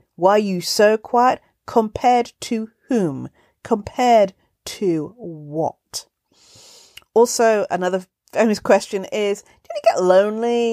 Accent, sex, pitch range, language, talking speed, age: British, female, 165-225 Hz, English, 110 wpm, 40-59